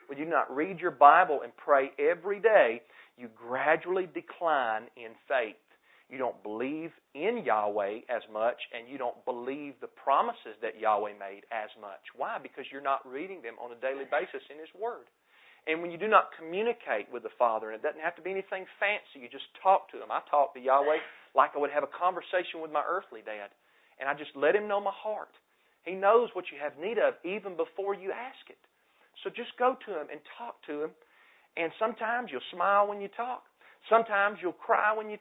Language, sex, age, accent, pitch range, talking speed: English, male, 40-59, American, 135-200 Hz, 210 wpm